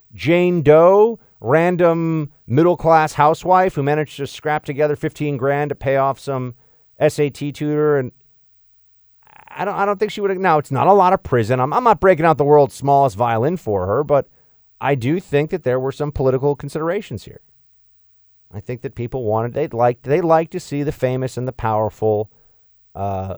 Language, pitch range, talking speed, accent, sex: English, 105-150 Hz, 190 wpm, American, male